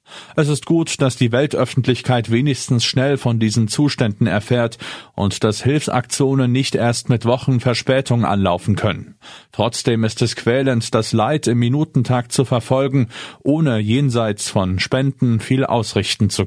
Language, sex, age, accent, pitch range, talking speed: German, male, 40-59, German, 110-140 Hz, 140 wpm